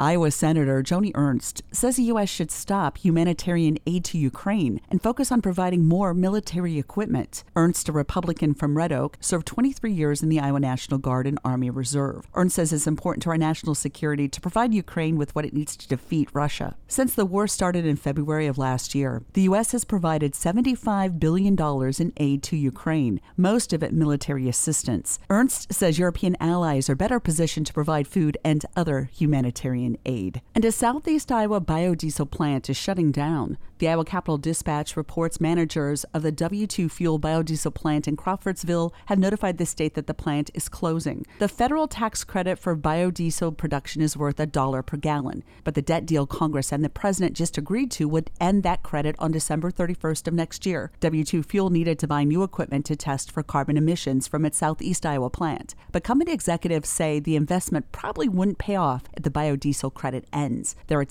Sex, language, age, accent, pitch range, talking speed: female, English, 40-59, American, 145-180 Hz, 190 wpm